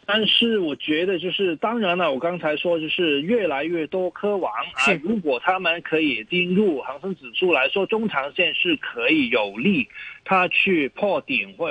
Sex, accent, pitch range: male, native, 165-220 Hz